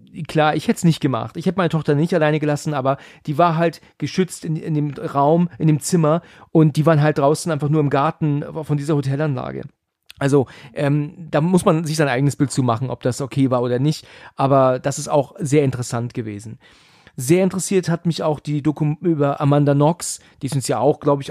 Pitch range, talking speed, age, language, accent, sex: 140-165 Hz, 220 wpm, 40-59, German, German, male